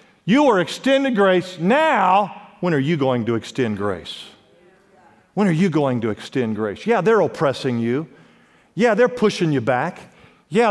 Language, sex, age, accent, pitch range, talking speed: English, male, 50-69, American, 150-215 Hz, 165 wpm